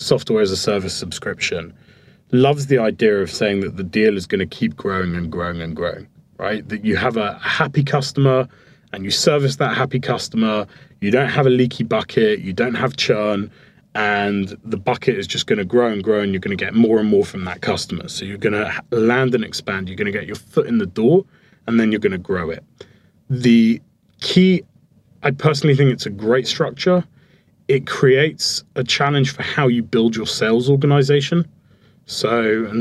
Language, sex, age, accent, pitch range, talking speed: Hebrew, male, 30-49, British, 105-140 Hz, 200 wpm